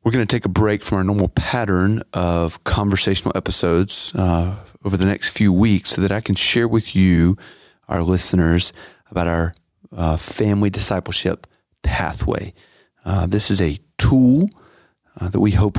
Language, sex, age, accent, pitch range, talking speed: English, male, 40-59, American, 90-105 Hz, 165 wpm